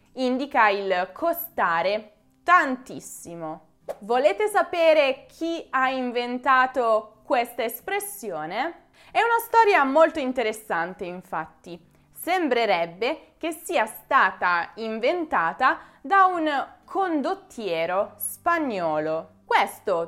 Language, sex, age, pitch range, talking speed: Italian, female, 20-39, 205-310 Hz, 80 wpm